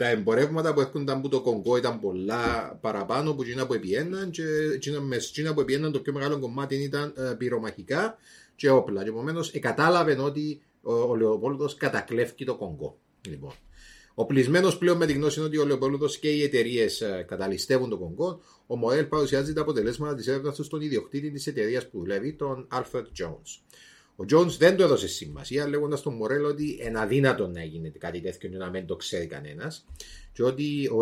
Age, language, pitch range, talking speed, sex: 30-49, Greek, 115-150 Hz, 180 wpm, male